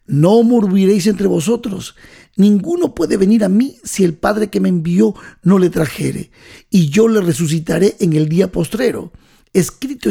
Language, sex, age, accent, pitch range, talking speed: Spanish, male, 50-69, Mexican, 170-230 Hz, 160 wpm